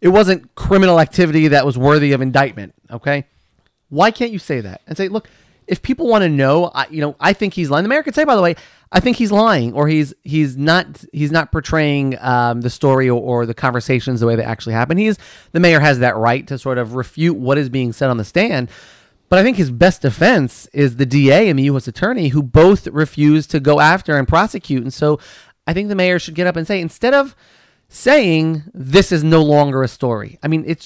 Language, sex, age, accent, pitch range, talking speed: English, male, 30-49, American, 130-175 Hz, 235 wpm